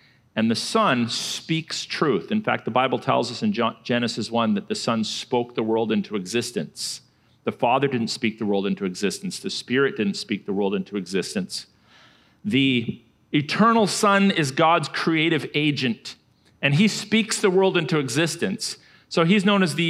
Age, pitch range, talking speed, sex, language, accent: 40-59, 160-210 Hz, 170 wpm, male, English, American